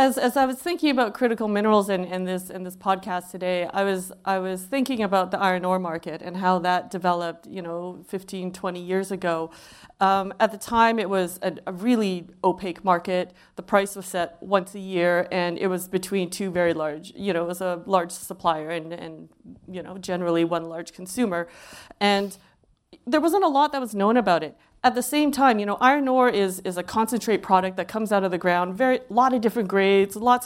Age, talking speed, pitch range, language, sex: 30-49, 215 wpm, 180-215 Hz, English, female